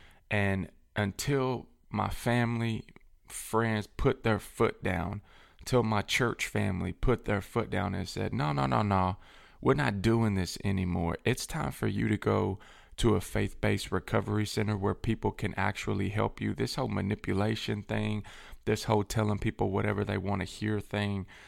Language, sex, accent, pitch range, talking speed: English, male, American, 95-110 Hz, 165 wpm